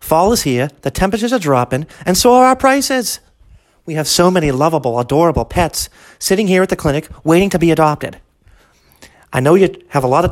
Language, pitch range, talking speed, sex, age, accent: English, 135-190 Hz, 205 wpm, male, 40-59, American